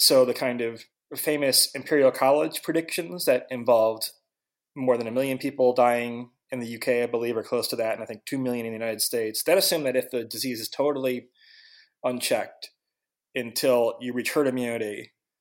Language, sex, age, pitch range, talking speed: English, male, 20-39, 120-155 Hz, 185 wpm